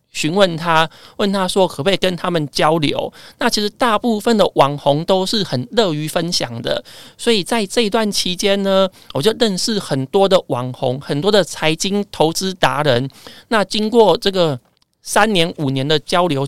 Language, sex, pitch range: Chinese, male, 155-210 Hz